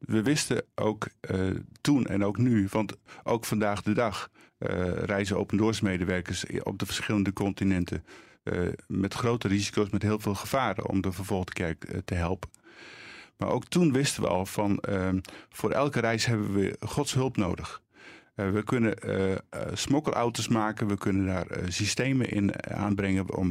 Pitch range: 95-115 Hz